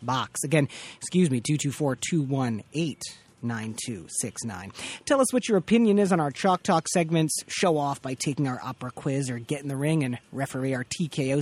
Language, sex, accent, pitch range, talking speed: English, male, American, 135-175 Hz, 190 wpm